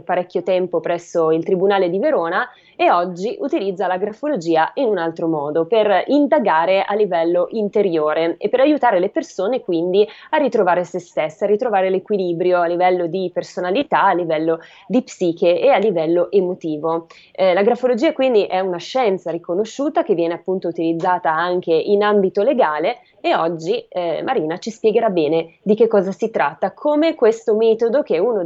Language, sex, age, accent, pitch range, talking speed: Italian, female, 20-39, native, 175-225 Hz, 170 wpm